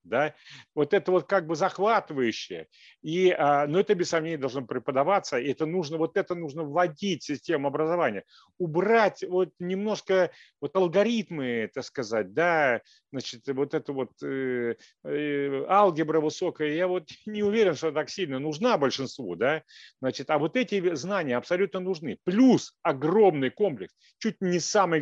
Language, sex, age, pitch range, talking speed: Russian, male, 40-59, 140-185 Hz, 155 wpm